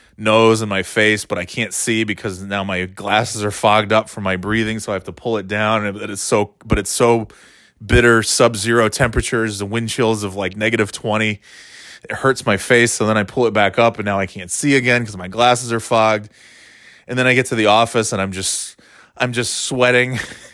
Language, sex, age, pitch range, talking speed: English, male, 20-39, 105-125 Hz, 220 wpm